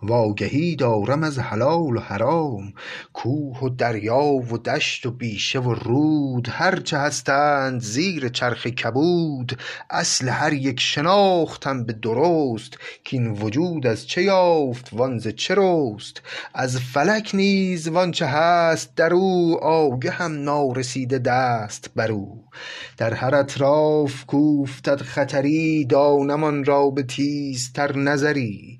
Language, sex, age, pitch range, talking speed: Persian, male, 30-49, 125-160 Hz, 120 wpm